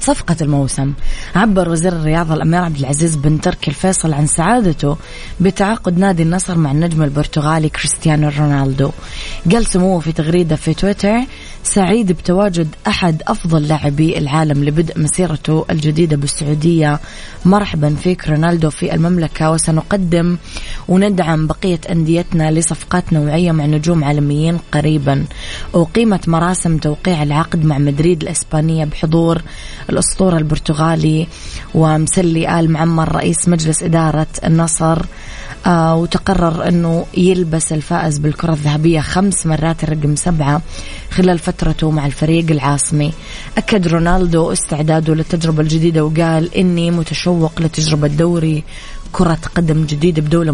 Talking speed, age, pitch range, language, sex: 115 wpm, 20-39, 155-175 Hz, Arabic, female